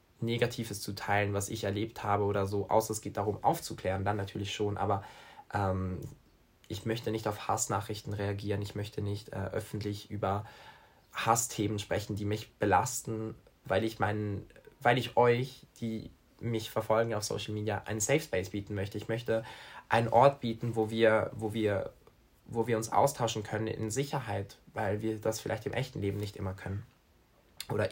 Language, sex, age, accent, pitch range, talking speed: German, male, 20-39, German, 100-115 Hz, 170 wpm